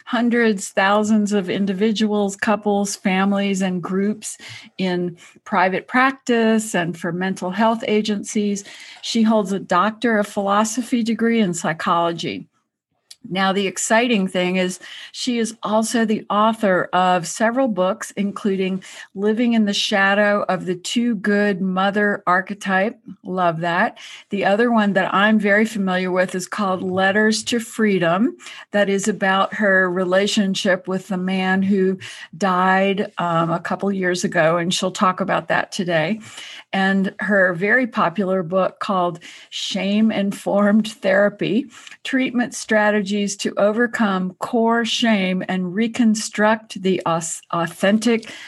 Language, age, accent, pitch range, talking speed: English, 50-69, American, 185-220 Hz, 125 wpm